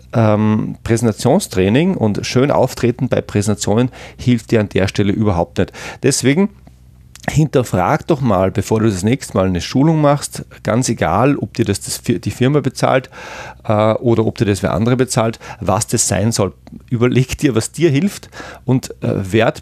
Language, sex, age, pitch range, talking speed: German, male, 40-59, 95-125 Hz, 155 wpm